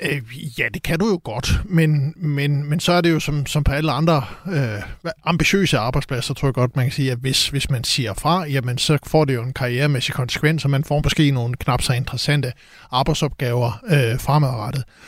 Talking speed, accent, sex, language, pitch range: 190 wpm, native, male, Danish, 130-155 Hz